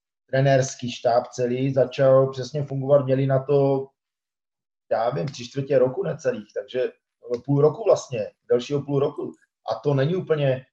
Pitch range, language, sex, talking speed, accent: 135-155 Hz, Czech, male, 145 wpm, native